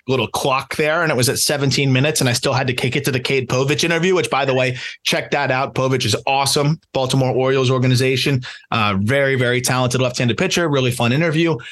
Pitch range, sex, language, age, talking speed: 130-160 Hz, male, English, 20-39, 220 wpm